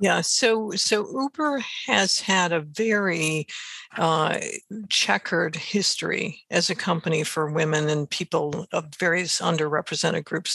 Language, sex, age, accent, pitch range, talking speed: English, female, 60-79, American, 165-195 Hz, 125 wpm